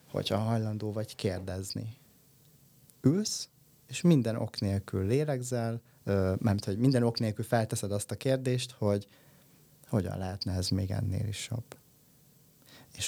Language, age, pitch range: Hungarian, 30-49, 110-135 Hz